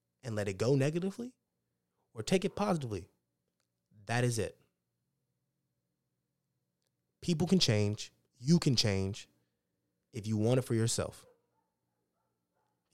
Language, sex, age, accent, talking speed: English, male, 20-39, American, 115 wpm